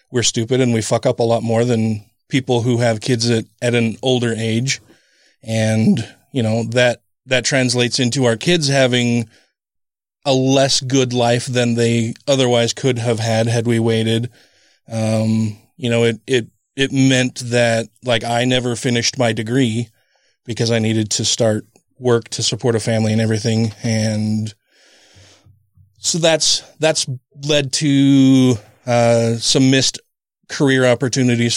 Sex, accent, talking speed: male, American, 150 wpm